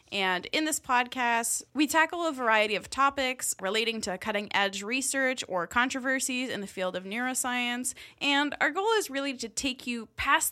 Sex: female